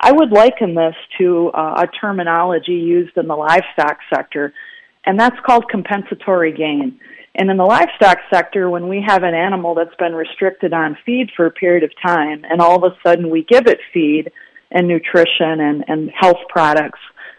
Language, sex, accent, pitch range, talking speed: English, female, American, 165-200 Hz, 185 wpm